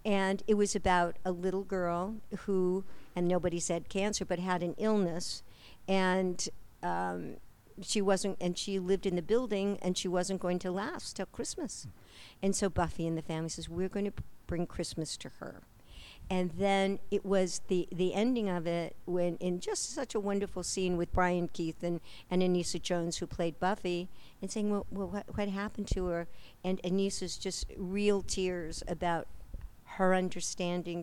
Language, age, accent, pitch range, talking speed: English, 60-79, American, 175-200 Hz, 175 wpm